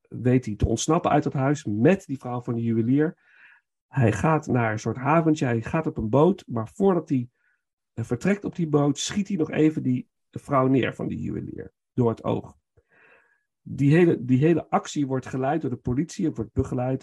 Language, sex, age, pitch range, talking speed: Dutch, male, 50-69, 120-160 Hz, 195 wpm